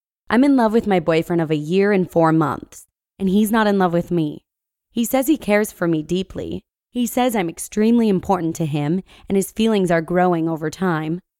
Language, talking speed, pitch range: English, 210 wpm, 165-205 Hz